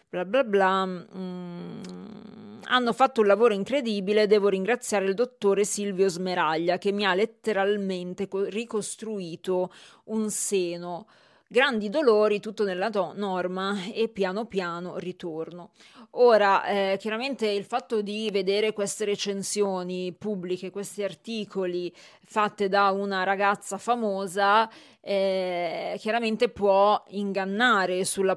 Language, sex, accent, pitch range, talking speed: Italian, female, native, 185-215 Hz, 115 wpm